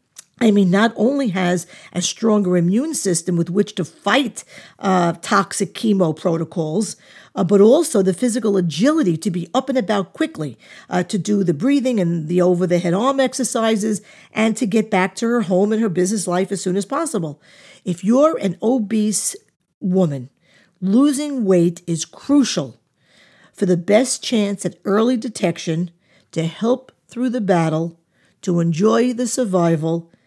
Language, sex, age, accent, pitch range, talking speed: English, female, 50-69, American, 175-220 Hz, 160 wpm